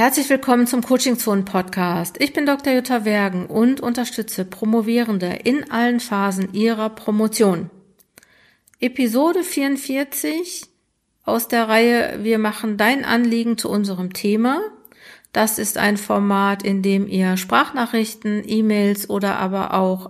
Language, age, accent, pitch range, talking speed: German, 50-69, German, 195-240 Hz, 120 wpm